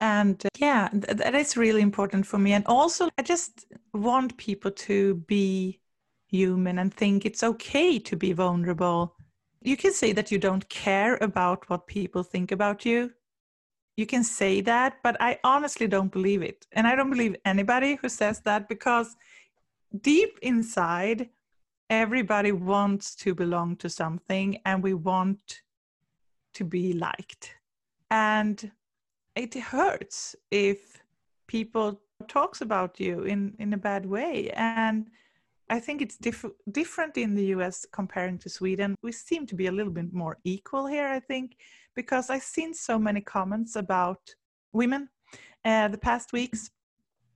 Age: 30-49